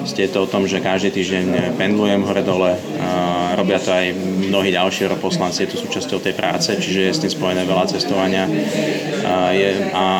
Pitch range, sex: 90-95 Hz, male